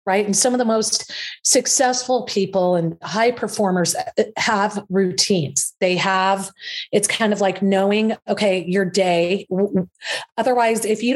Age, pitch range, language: 30-49, 175-215 Hz, English